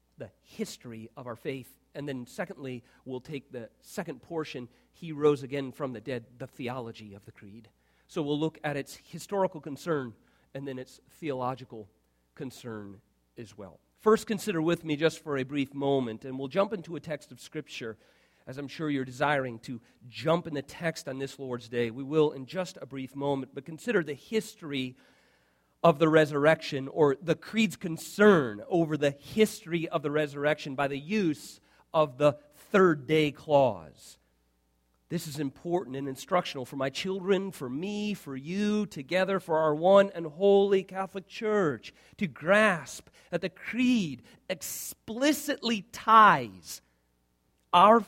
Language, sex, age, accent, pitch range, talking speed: English, male, 40-59, American, 125-185 Hz, 160 wpm